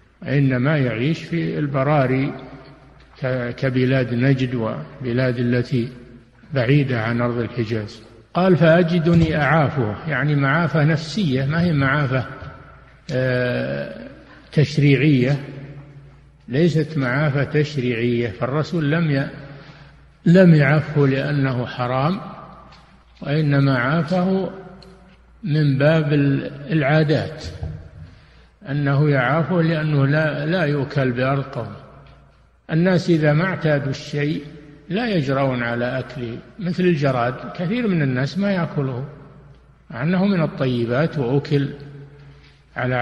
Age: 60-79